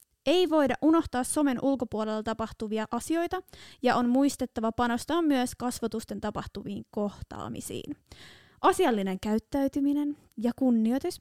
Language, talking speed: Finnish, 100 wpm